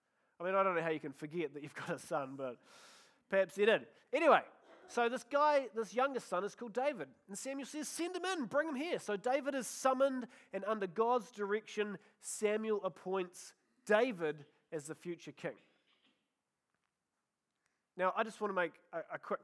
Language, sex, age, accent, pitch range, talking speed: English, male, 30-49, Australian, 165-235 Hz, 185 wpm